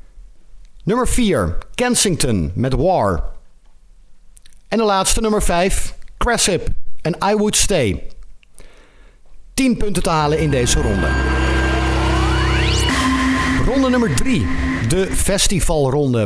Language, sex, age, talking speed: Dutch, male, 50-69, 100 wpm